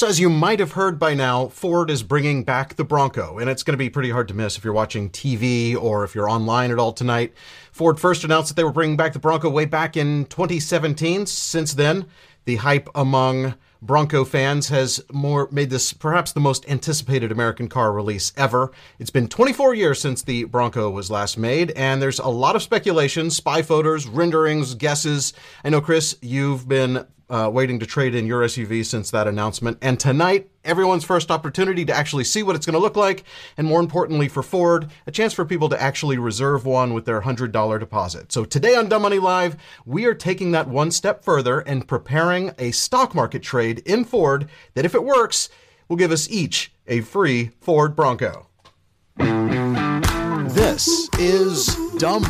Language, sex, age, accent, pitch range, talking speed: English, male, 30-49, American, 125-170 Hz, 195 wpm